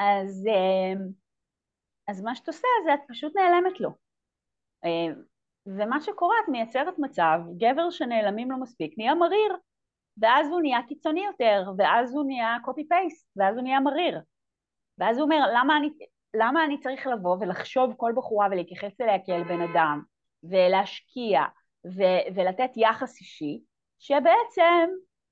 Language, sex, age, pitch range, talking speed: Hebrew, female, 30-49, 190-295 Hz, 135 wpm